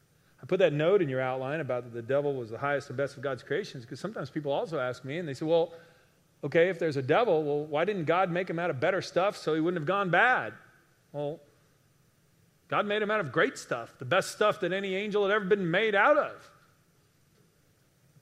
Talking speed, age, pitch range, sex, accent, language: 230 wpm, 40-59, 135-165 Hz, male, American, English